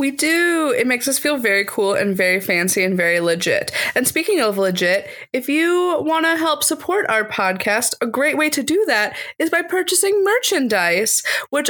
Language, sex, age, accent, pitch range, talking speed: English, female, 20-39, American, 215-290 Hz, 190 wpm